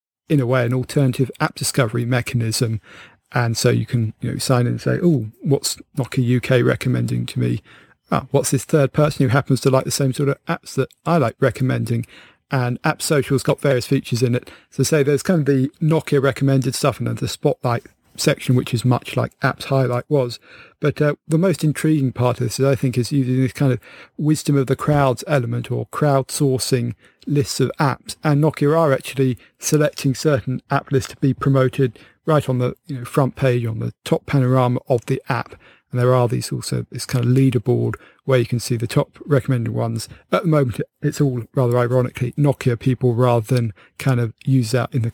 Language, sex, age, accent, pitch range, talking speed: English, male, 40-59, British, 125-140 Hz, 210 wpm